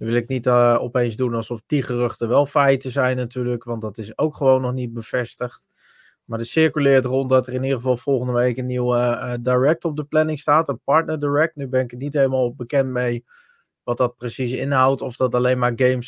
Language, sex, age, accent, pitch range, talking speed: Dutch, male, 20-39, Dutch, 120-145 Hz, 230 wpm